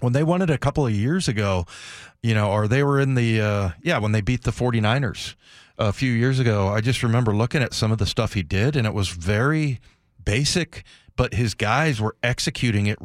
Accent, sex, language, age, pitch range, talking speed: American, male, English, 40-59, 105-130 Hz, 225 wpm